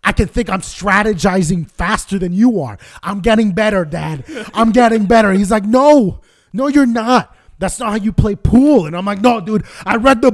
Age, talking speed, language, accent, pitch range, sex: 20-39, 210 wpm, English, American, 180-255 Hz, male